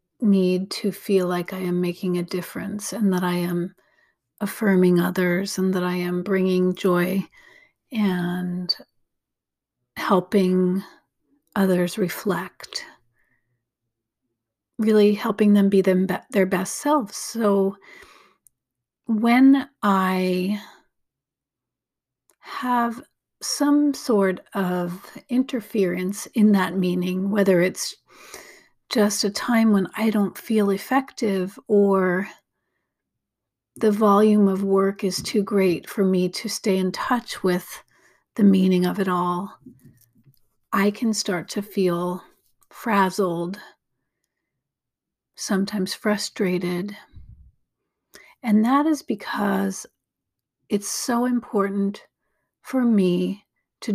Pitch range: 180-215 Hz